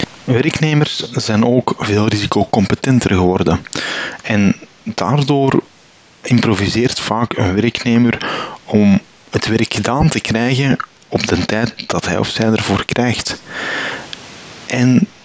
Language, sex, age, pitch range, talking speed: Dutch, male, 30-49, 95-125 Hz, 110 wpm